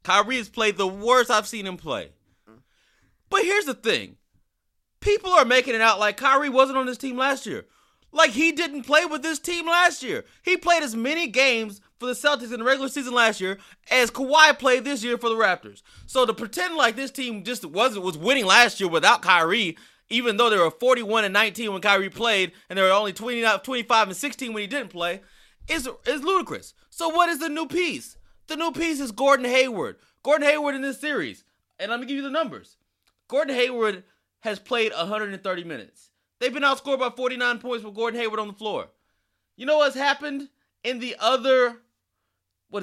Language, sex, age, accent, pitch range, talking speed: English, male, 30-49, American, 215-290 Hz, 205 wpm